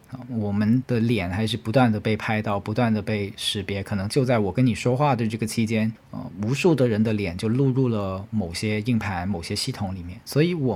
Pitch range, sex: 100-125 Hz, male